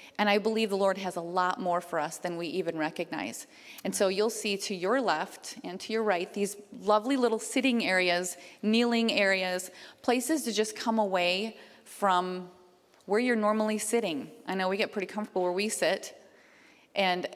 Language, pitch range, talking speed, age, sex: English, 185-230 Hz, 185 wpm, 30-49, female